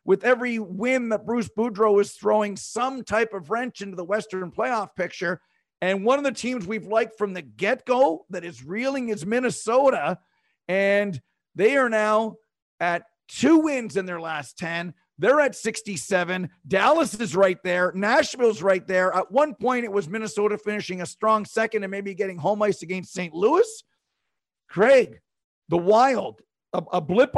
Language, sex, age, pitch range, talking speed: English, male, 50-69, 185-230 Hz, 170 wpm